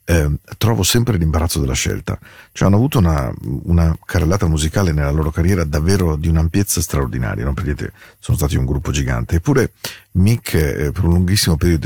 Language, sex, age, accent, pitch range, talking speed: Spanish, male, 40-59, Italian, 75-95 Hz, 170 wpm